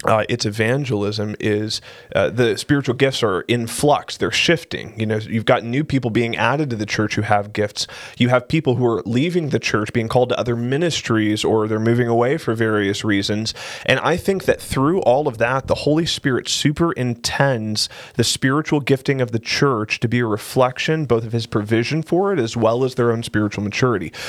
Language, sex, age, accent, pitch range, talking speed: English, male, 20-39, American, 110-135 Hz, 205 wpm